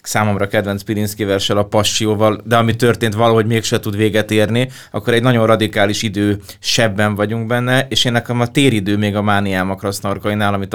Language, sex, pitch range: Hungarian, male, 100-115 Hz